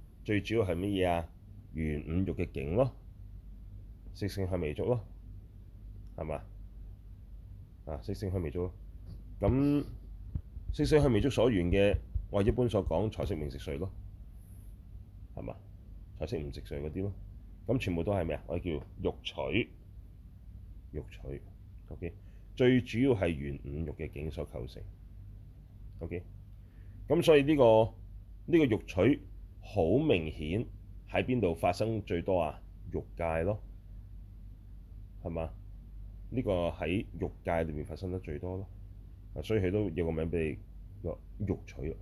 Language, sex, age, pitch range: Chinese, male, 30-49, 85-100 Hz